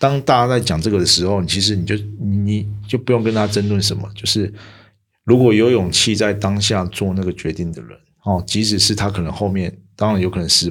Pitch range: 95-110 Hz